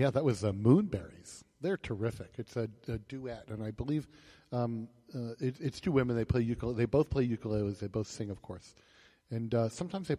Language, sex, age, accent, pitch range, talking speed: English, male, 50-69, American, 110-135 Hz, 220 wpm